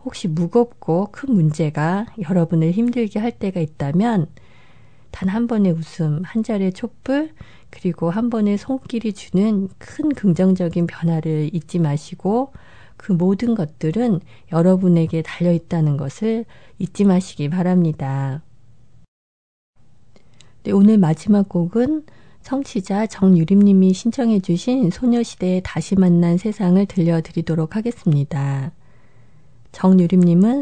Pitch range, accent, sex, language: 160-210 Hz, native, female, Korean